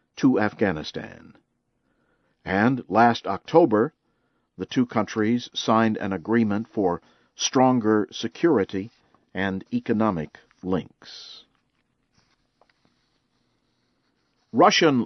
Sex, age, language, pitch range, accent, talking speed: male, 50-69, English, 105-130 Hz, American, 70 wpm